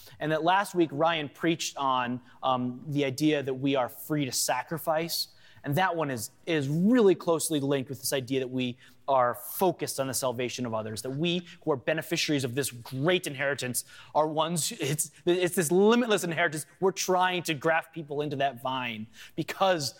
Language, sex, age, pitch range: English, male, 20-39, 130-165 Hz